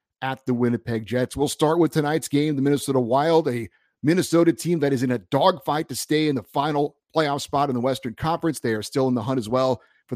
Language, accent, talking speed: English, American, 235 wpm